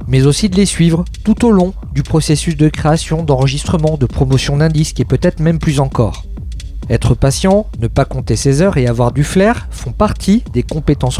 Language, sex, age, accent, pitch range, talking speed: French, male, 40-59, French, 140-185 Hz, 200 wpm